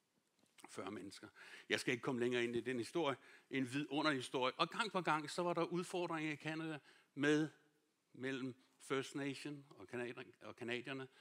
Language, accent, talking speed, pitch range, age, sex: Danish, native, 155 wpm, 130-180 Hz, 60-79, male